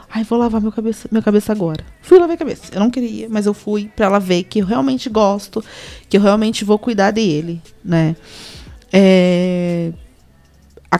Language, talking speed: Portuguese, 185 wpm